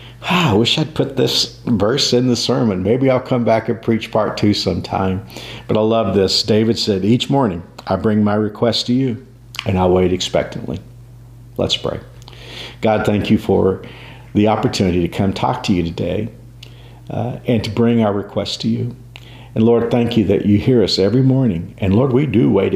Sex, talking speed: male, 190 wpm